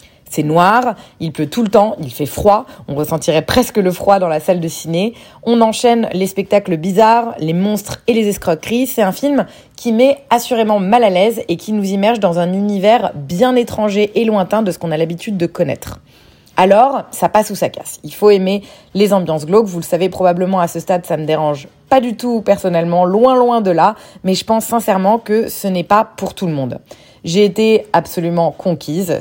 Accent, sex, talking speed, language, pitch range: French, female, 210 wpm, French, 170-215 Hz